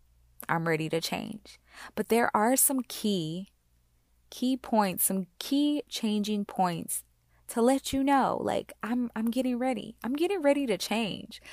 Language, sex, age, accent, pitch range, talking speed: English, female, 20-39, American, 160-200 Hz, 150 wpm